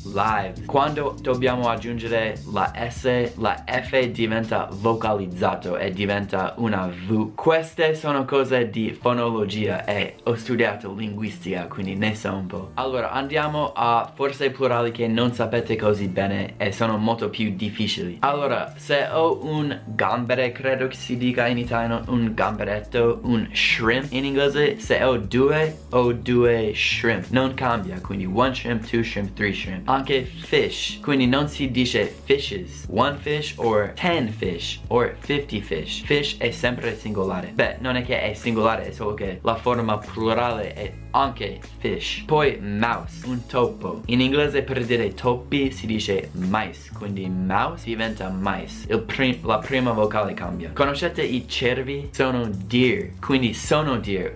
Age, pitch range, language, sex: 20-39, 105-130 Hz, Italian, male